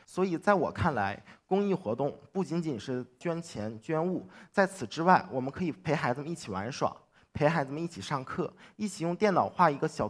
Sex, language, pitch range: male, Chinese, 125-170 Hz